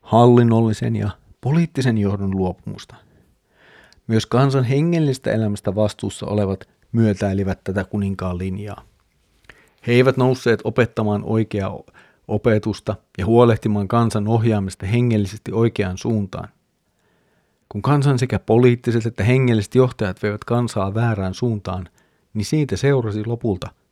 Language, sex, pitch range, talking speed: Finnish, male, 100-125 Hz, 110 wpm